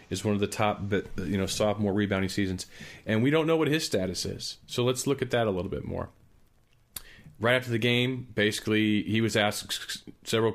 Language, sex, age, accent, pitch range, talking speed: English, male, 40-59, American, 95-110 Hz, 205 wpm